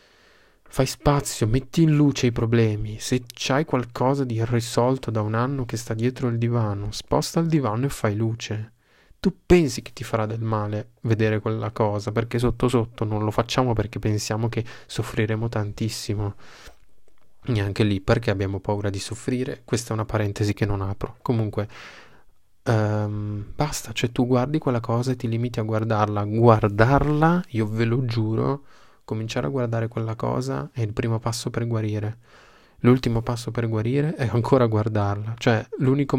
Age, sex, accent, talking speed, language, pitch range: 20-39, male, native, 160 wpm, Italian, 110-125 Hz